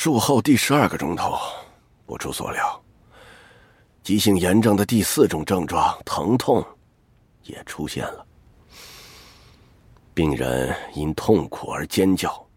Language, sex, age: Chinese, male, 50-69